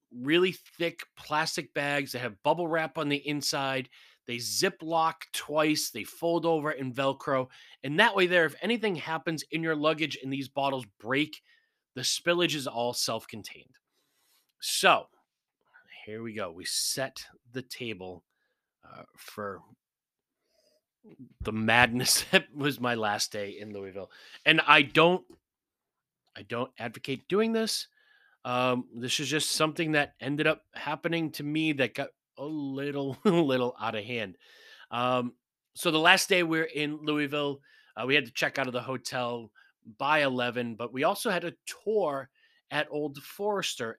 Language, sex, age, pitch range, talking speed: English, male, 30-49, 125-170 Hz, 155 wpm